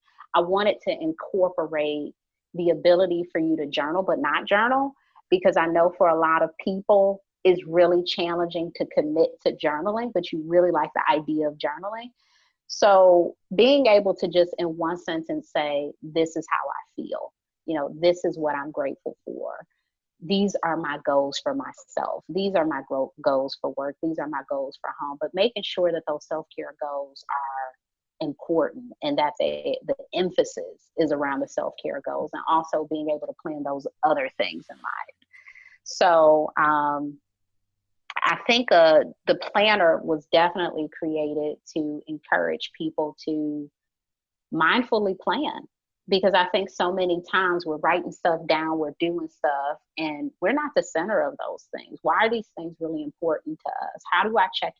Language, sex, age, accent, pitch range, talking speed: English, female, 30-49, American, 155-220 Hz, 170 wpm